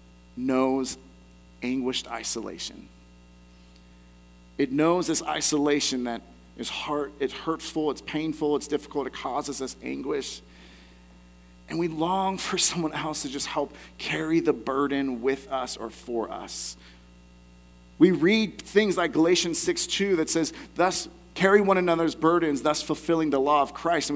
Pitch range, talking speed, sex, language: 125-175 Hz, 145 wpm, male, English